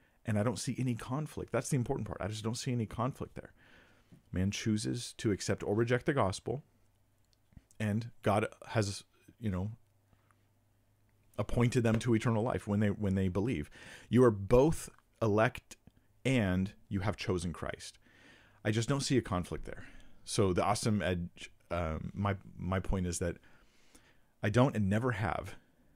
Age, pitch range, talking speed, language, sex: 40-59, 90-110 Hz, 165 wpm, English, male